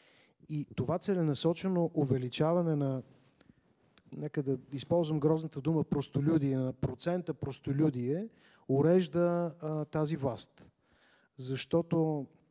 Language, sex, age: Bulgarian, male, 30-49